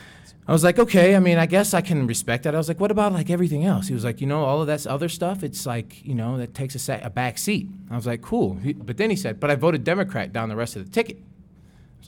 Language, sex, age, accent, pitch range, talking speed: English, male, 20-39, American, 100-140 Hz, 295 wpm